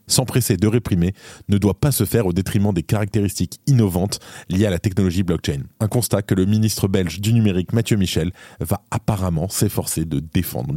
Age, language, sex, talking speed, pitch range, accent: 20-39, French, male, 185 wpm, 95-115 Hz, French